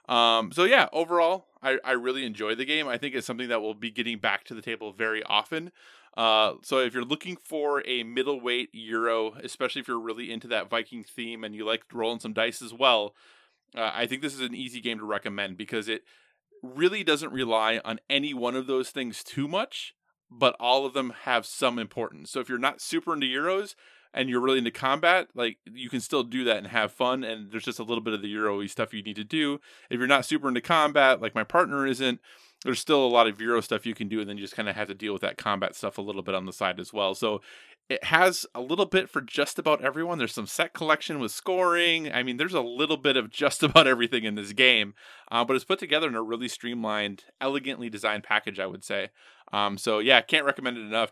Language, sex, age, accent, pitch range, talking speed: English, male, 20-39, American, 110-135 Hz, 245 wpm